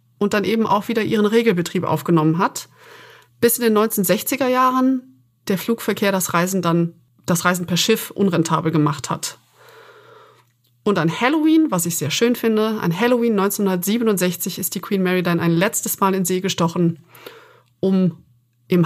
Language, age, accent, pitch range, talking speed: German, 30-49, German, 170-220 Hz, 160 wpm